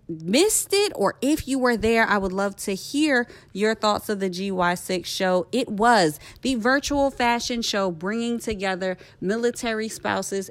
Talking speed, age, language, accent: 160 wpm, 30-49, English, American